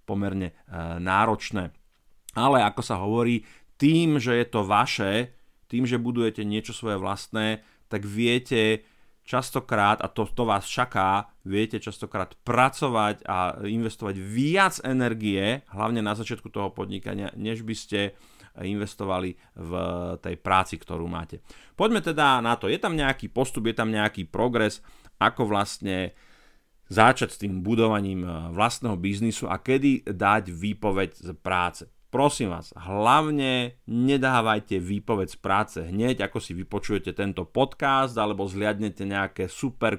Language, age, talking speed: Slovak, 30-49, 135 wpm